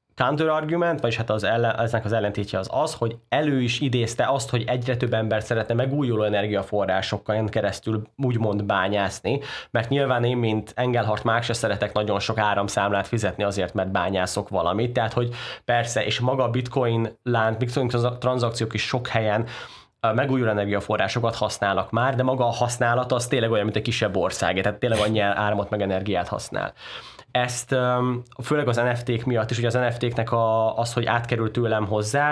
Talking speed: 175 wpm